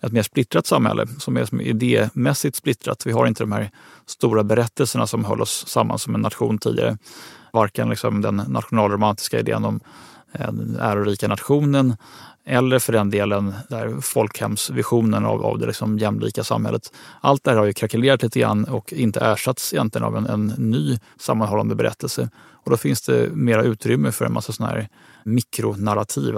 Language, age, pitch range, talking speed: Swedish, 30-49, 105-125 Hz, 165 wpm